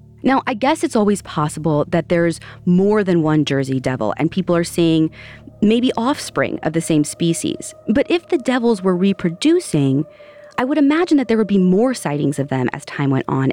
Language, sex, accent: English, female, American